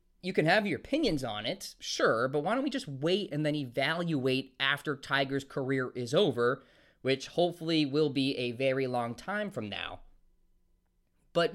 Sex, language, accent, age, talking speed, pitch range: male, English, American, 20-39, 170 wpm, 135-190 Hz